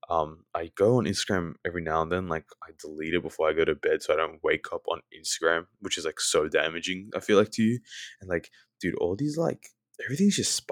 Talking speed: 240 wpm